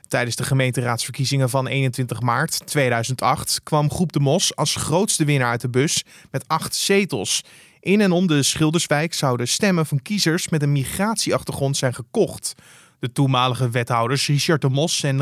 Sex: male